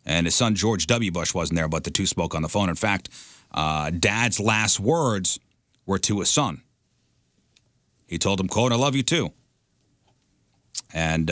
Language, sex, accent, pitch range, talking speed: English, male, American, 90-125 Hz, 180 wpm